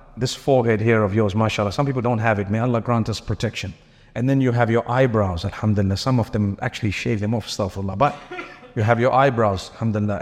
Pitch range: 115-145 Hz